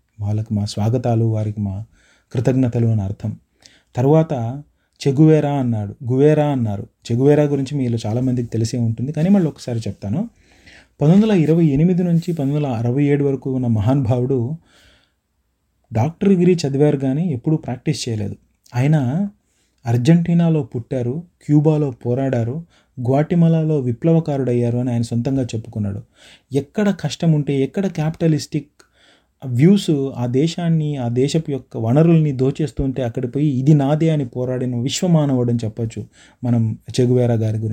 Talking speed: 105 wpm